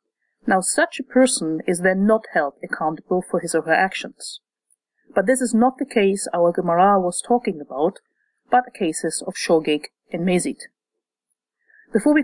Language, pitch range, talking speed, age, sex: English, 185-240 Hz, 165 wpm, 50-69, female